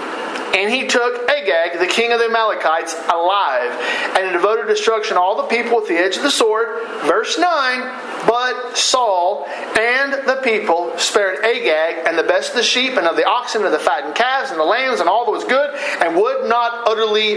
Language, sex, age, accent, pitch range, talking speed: English, male, 50-69, American, 215-295 Hz, 205 wpm